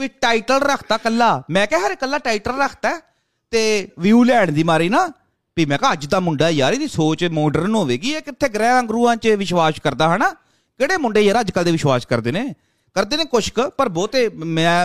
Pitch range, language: 160-255 Hz, Punjabi